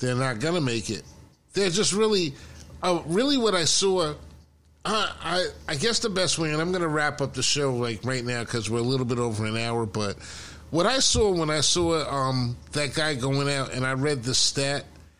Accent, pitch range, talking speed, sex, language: American, 115-150 Hz, 225 wpm, male, English